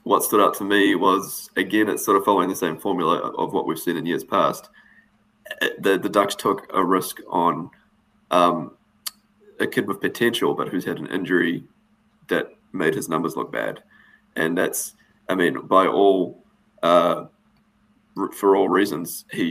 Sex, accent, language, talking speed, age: male, Australian, English, 170 wpm, 20-39